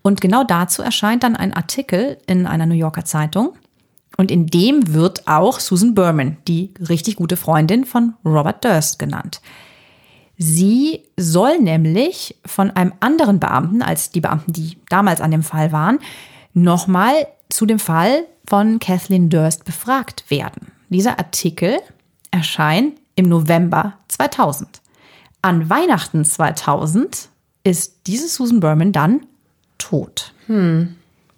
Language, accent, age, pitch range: German, German, 30-49, 160-205 Hz